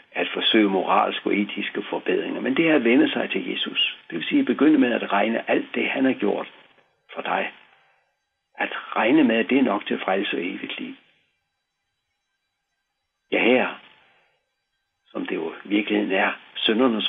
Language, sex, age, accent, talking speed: Danish, male, 60-79, native, 170 wpm